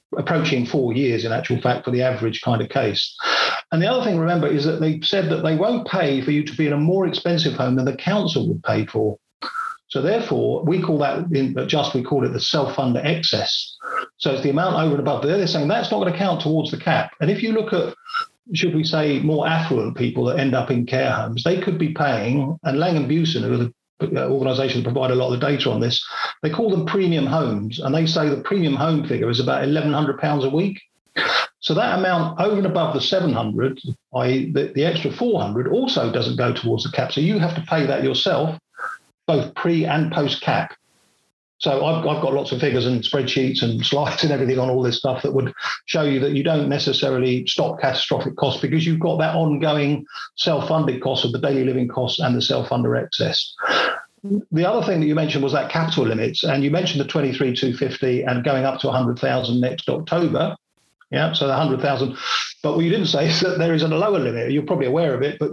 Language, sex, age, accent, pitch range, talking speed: English, male, 50-69, British, 130-165 Hz, 220 wpm